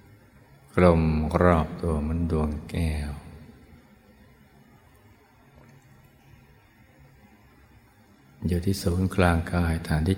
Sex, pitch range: male, 80-105 Hz